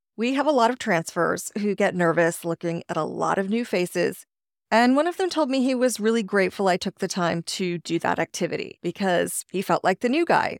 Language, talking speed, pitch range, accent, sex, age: English, 230 wpm, 170-235 Hz, American, female, 30-49